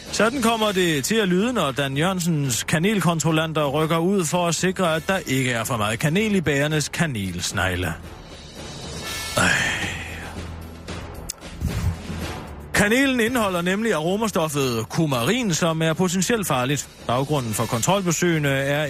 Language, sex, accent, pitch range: Danish, male, native, 135-190 Hz